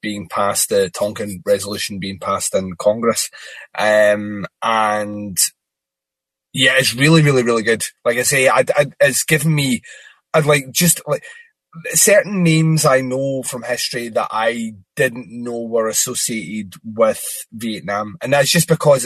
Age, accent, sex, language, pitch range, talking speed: 20-39, British, male, English, 105-155 Hz, 140 wpm